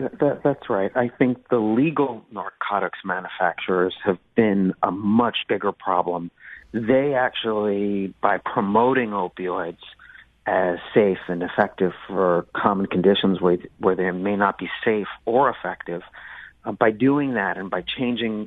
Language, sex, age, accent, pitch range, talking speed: English, male, 40-59, American, 95-120 Hz, 135 wpm